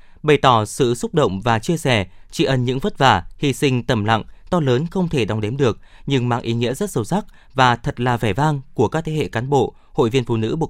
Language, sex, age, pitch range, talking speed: Vietnamese, male, 20-39, 110-150 Hz, 265 wpm